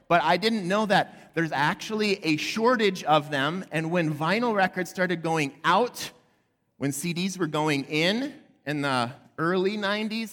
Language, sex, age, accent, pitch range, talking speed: English, male, 30-49, American, 115-175 Hz, 155 wpm